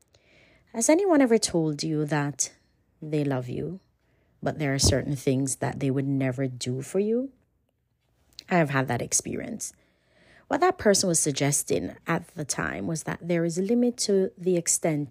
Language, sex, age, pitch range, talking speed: English, female, 30-49, 140-180 Hz, 170 wpm